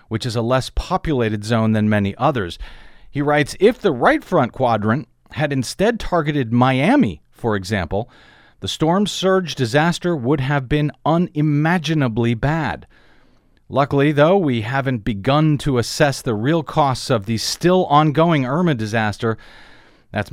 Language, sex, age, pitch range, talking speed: English, male, 40-59, 115-165 Hz, 140 wpm